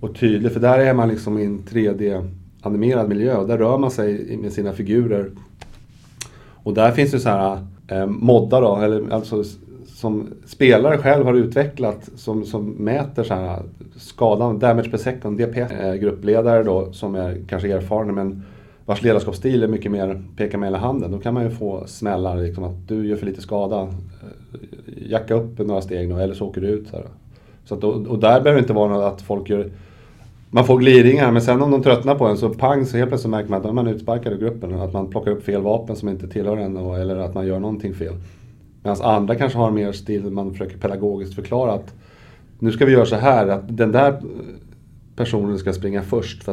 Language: Swedish